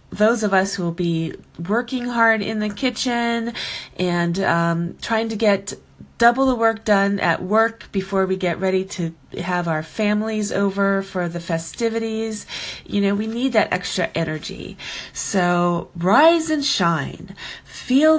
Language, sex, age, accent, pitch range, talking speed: English, female, 40-59, American, 180-225 Hz, 150 wpm